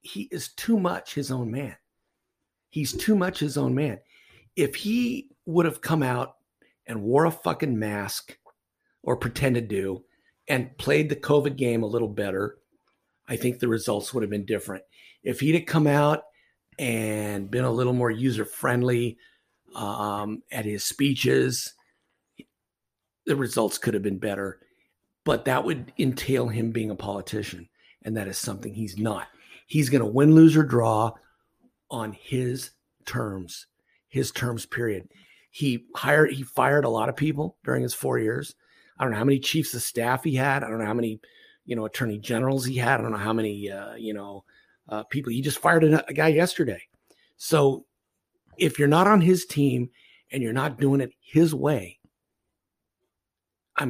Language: English